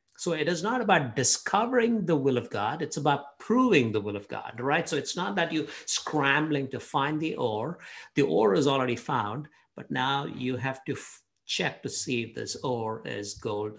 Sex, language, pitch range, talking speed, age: male, English, 110-150 Hz, 200 wpm, 60-79